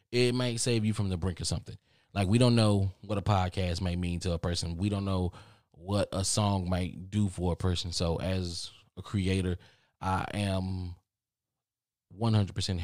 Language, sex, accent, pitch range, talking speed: English, male, American, 85-115 Hz, 180 wpm